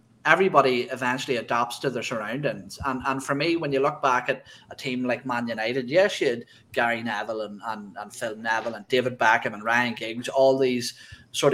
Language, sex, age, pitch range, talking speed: English, male, 20-39, 120-140 Hz, 205 wpm